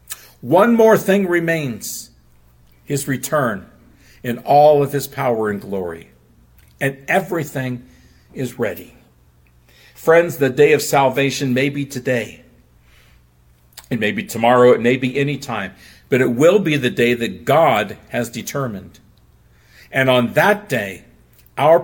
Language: English